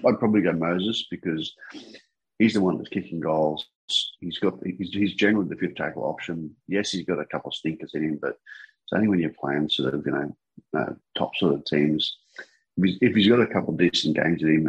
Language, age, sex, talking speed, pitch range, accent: English, 40-59, male, 230 wpm, 75-90 Hz, Australian